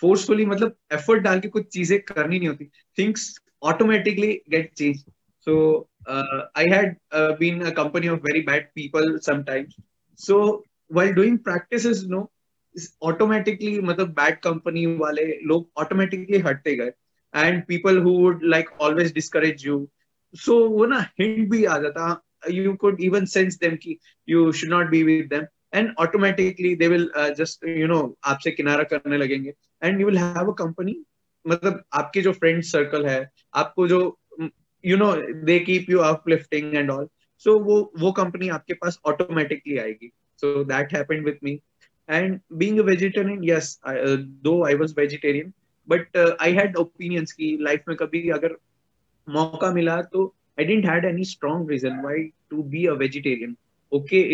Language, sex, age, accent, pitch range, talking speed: Hindi, male, 20-39, native, 150-190 Hz, 90 wpm